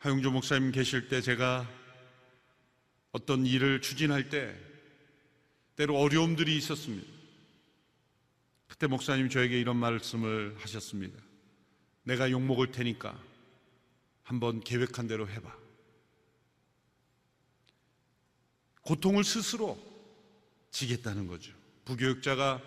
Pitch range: 125-155 Hz